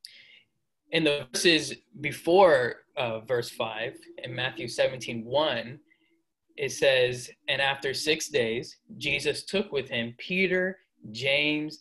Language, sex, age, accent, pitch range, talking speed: English, male, 20-39, American, 125-180 Hz, 115 wpm